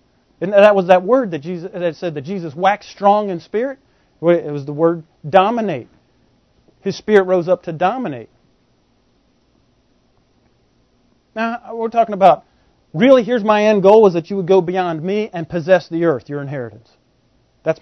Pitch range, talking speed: 175-230 Hz, 160 wpm